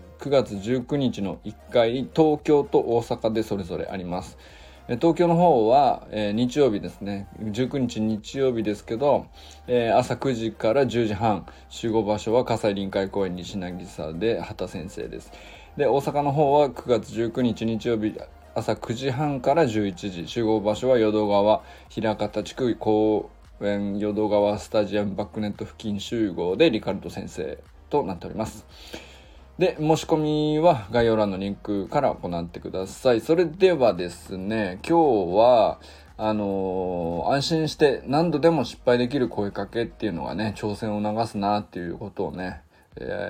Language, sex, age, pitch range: Japanese, male, 20-39, 100-135 Hz